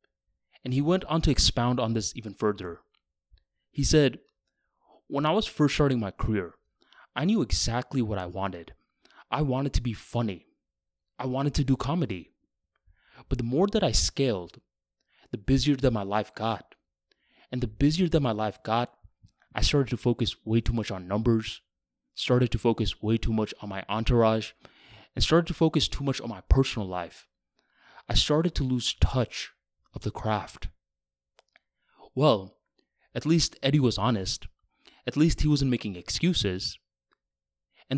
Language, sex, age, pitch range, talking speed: English, male, 20-39, 105-140 Hz, 165 wpm